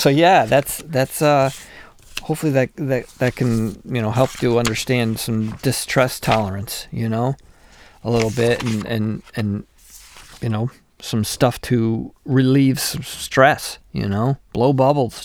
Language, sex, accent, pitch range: English, male, American, 115-135 Hz